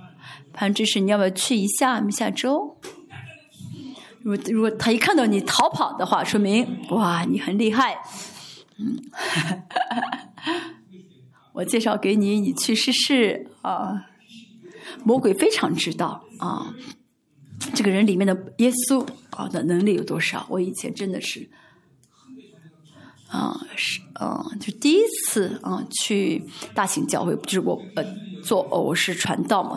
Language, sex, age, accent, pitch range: Chinese, female, 20-39, native, 195-265 Hz